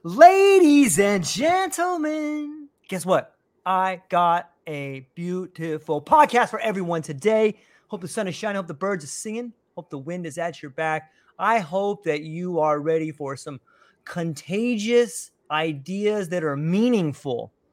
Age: 30-49